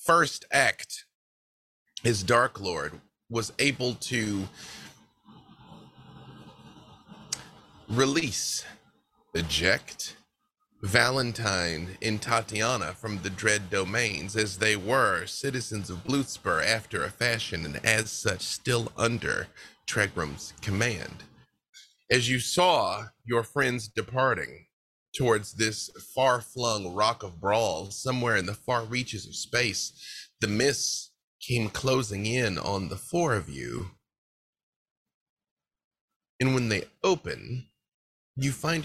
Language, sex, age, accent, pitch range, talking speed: English, male, 30-49, American, 100-125 Hz, 105 wpm